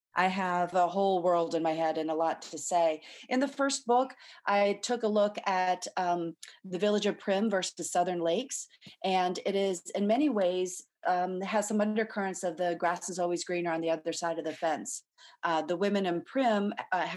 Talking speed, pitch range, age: 205 wpm, 165-195 Hz, 40-59